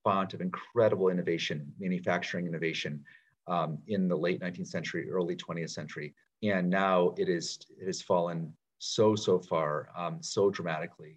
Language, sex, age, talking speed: English, male, 40-59, 145 wpm